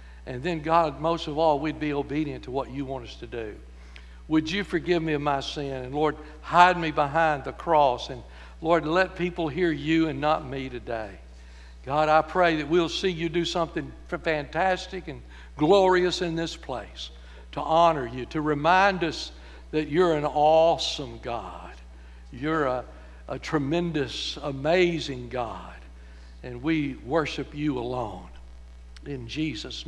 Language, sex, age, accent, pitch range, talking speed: English, male, 60-79, American, 130-170 Hz, 160 wpm